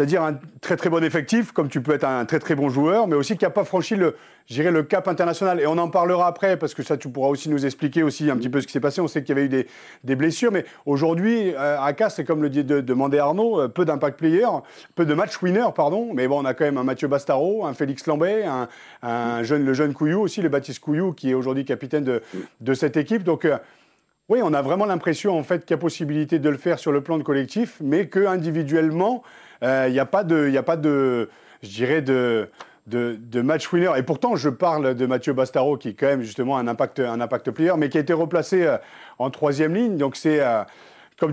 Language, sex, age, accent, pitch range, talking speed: French, male, 40-59, French, 130-165 Hz, 250 wpm